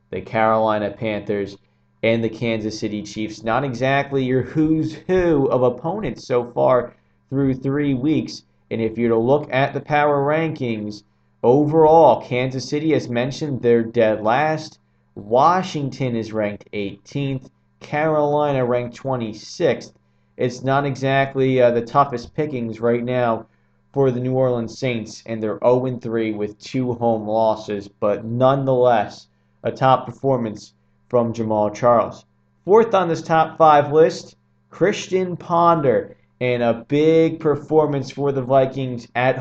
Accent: American